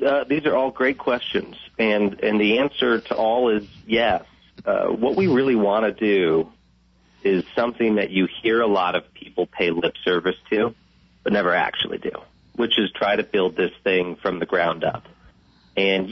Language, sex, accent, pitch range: English, male, American, 90-115 Hz